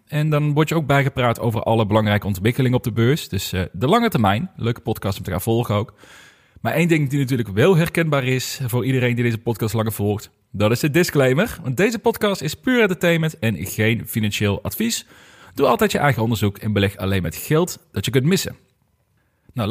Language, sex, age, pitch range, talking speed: Dutch, male, 30-49, 110-155 Hz, 210 wpm